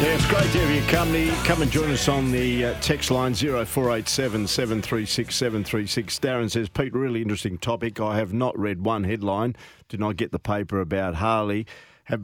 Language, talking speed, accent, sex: English, 185 wpm, Australian, male